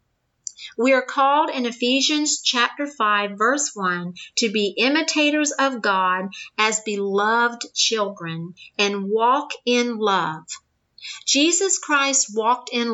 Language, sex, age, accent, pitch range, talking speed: English, female, 50-69, American, 210-285 Hz, 115 wpm